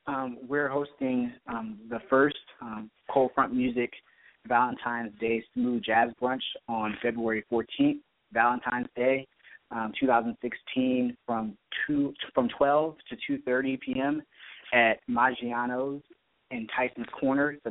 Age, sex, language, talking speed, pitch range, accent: 20-39, male, English, 120 wpm, 115-135 Hz, American